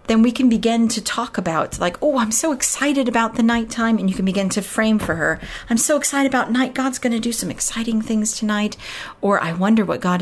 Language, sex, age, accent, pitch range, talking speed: English, female, 40-59, American, 190-245 Hz, 240 wpm